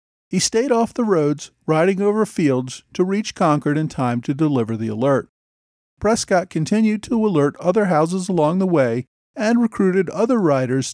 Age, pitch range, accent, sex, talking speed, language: 50-69, 125-190 Hz, American, male, 165 wpm, English